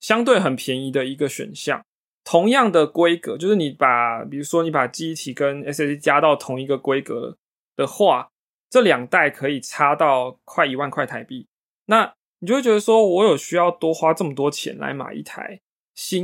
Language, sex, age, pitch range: Chinese, male, 20-39, 140-200 Hz